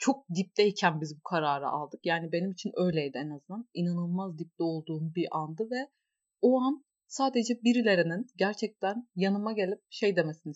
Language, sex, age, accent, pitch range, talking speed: Turkish, female, 30-49, native, 180-260 Hz, 155 wpm